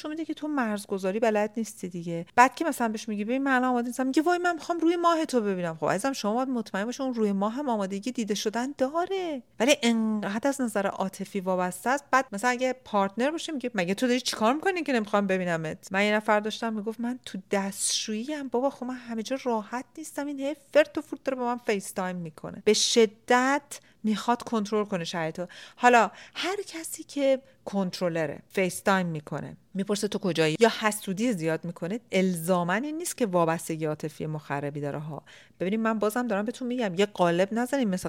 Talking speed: 190 wpm